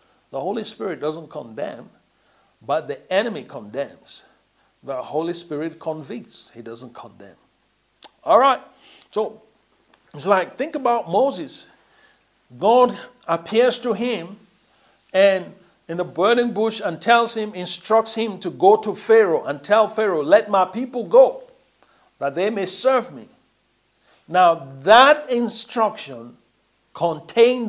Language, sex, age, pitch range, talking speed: English, male, 60-79, 165-235 Hz, 125 wpm